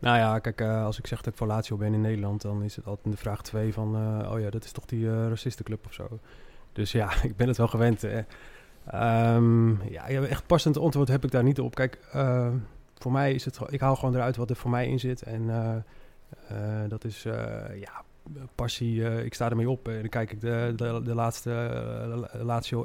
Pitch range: 110-125 Hz